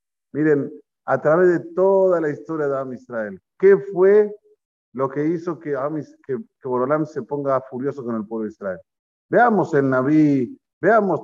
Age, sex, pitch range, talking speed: 50-69, male, 120-185 Hz, 165 wpm